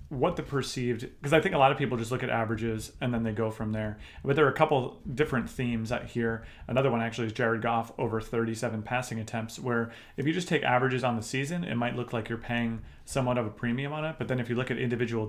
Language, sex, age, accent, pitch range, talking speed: English, male, 30-49, American, 110-125 Hz, 265 wpm